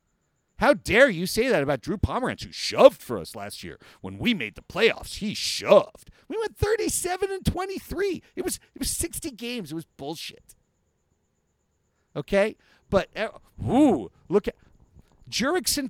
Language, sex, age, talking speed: English, male, 50-69, 155 wpm